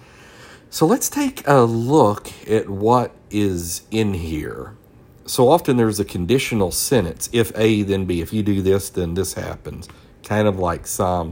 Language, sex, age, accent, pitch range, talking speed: English, male, 50-69, American, 95-120 Hz, 165 wpm